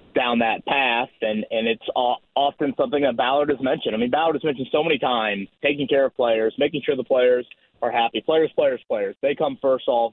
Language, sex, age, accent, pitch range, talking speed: English, male, 30-49, American, 125-165 Hz, 225 wpm